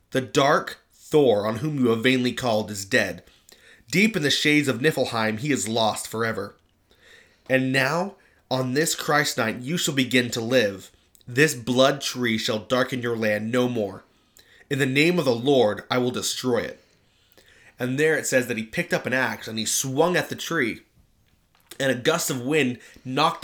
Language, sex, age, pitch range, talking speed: English, male, 30-49, 115-150 Hz, 185 wpm